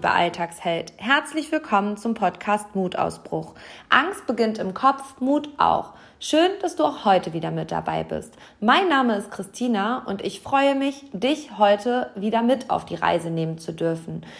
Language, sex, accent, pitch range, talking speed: German, female, German, 200-255 Hz, 165 wpm